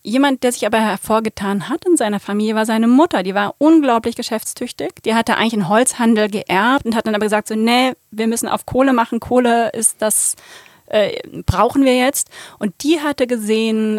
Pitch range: 205-245 Hz